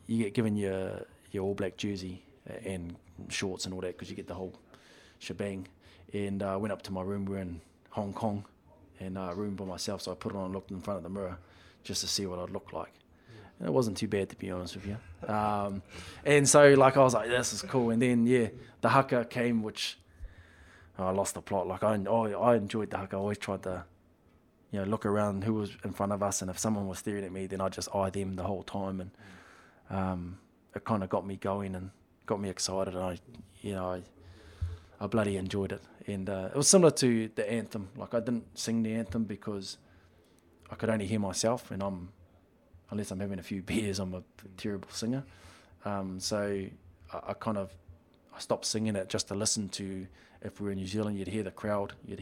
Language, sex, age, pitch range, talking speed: English, male, 20-39, 95-105 Hz, 230 wpm